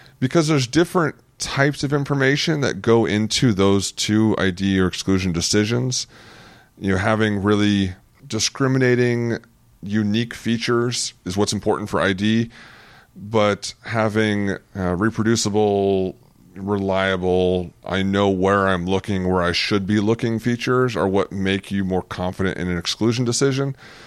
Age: 30-49